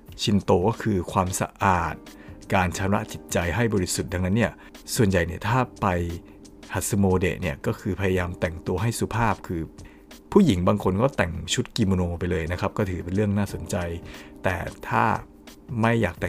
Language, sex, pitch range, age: Thai, male, 85-105 Hz, 60-79